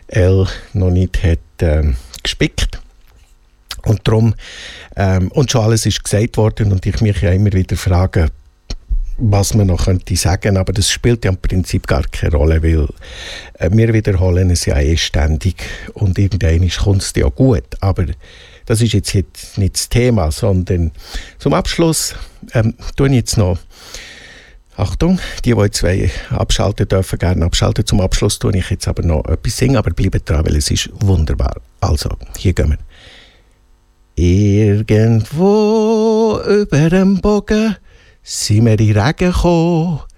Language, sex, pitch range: German, male, 90-130 Hz